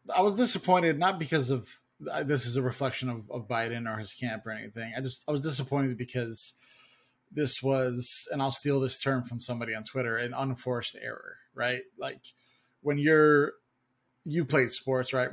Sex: male